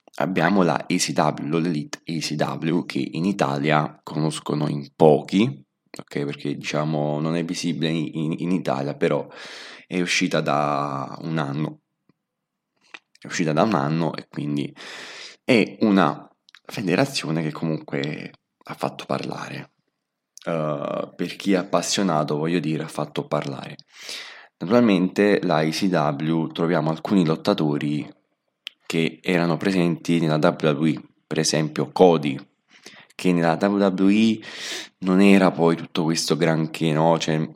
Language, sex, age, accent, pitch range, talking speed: Italian, male, 20-39, native, 75-90 Hz, 120 wpm